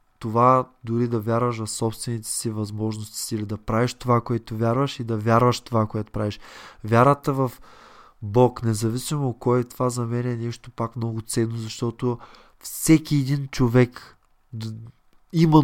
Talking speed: 155 wpm